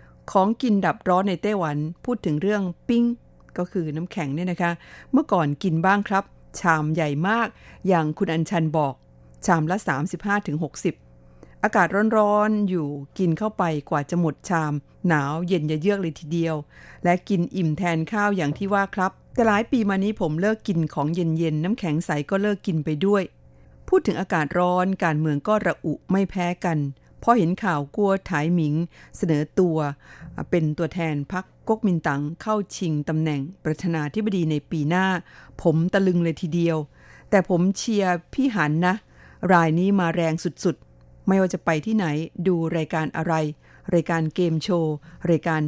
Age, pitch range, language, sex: 50-69, 155-195 Hz, Thai, female